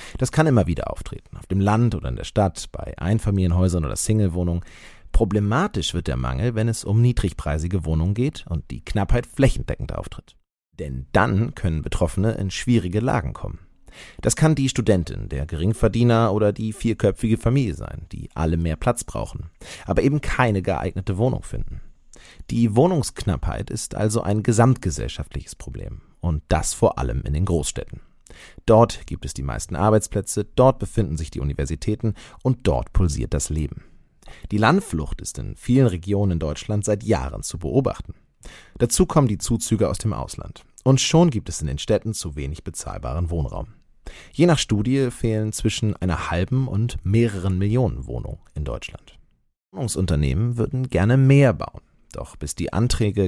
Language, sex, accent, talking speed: German, male, German, 160 wpm